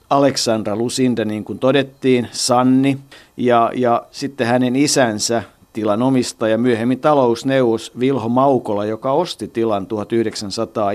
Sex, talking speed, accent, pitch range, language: male, 110 wpm, native, 110-130 Hz, Finnish